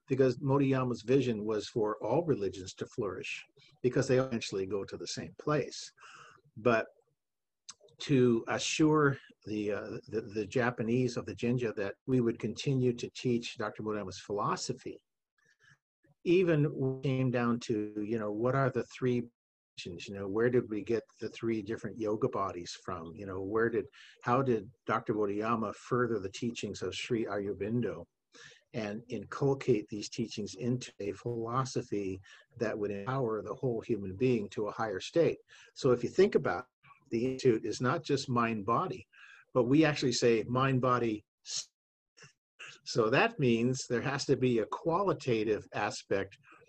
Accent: American